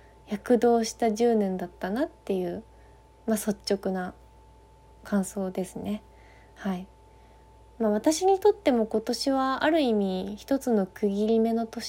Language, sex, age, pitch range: Japanese, female, 20-39, 195-240 Hz